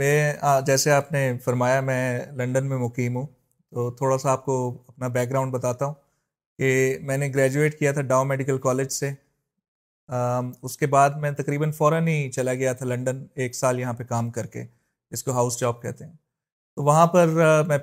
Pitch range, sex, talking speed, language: 130-140 Hz, male, 195 wpm, Urdu